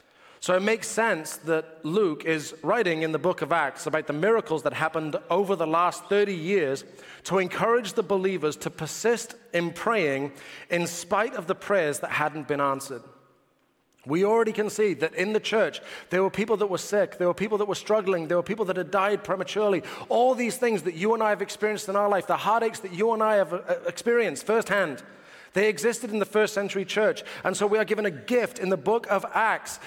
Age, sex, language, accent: 30-49, male, English, British